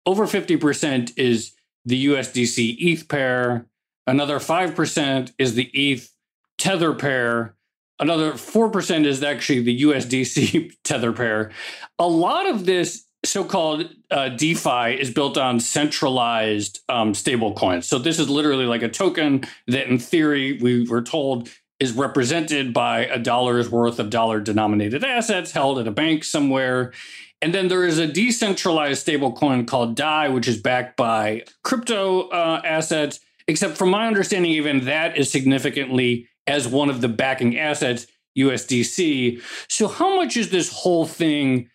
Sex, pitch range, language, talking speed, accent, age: male, 120-160 Hz, English, 145 wpm, American, 40-59